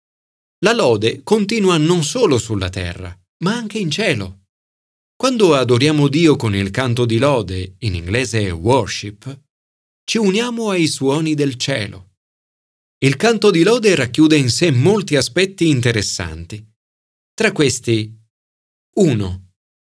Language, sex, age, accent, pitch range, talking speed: Italian, male, 40-59, native, 100-150 Hz, 125 wpm